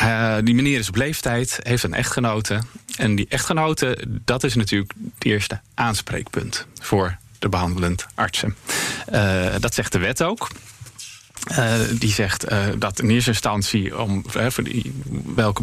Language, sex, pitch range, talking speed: Dutch, male, 105-130 Hz, 145 wpm